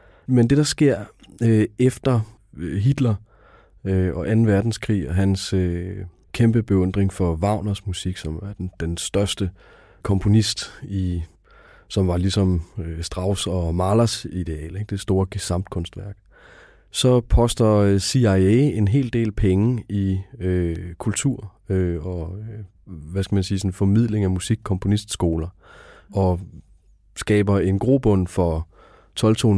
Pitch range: 90-105 Hz